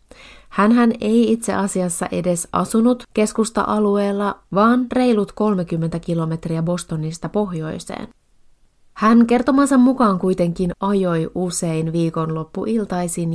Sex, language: female, Finnish